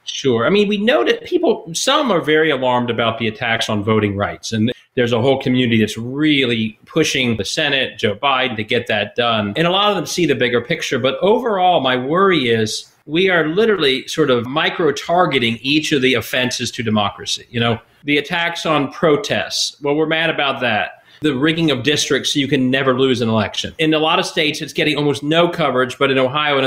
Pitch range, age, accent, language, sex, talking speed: 130-180 Hz, 40-59, American, English, male, 215 wpm